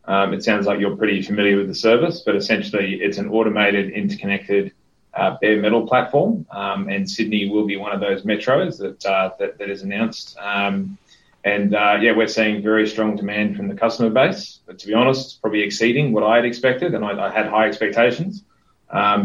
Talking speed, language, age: 205 wpm, English, 20-39